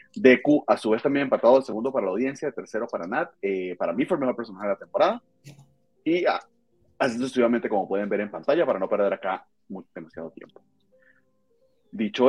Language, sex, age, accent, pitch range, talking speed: Spanish, male, 30-49, Venezuelan, 95-135 Hz, 200 wpm